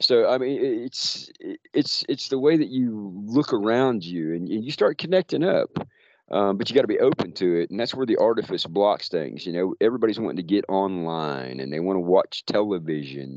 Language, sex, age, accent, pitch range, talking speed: English, male, 40-59, American, 95-140 Hz, 215 wpm